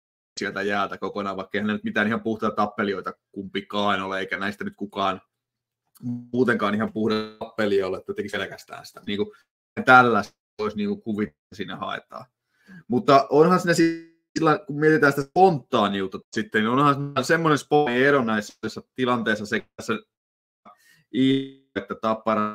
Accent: native